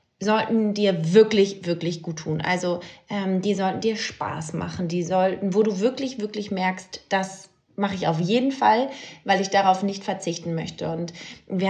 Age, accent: 20-39, German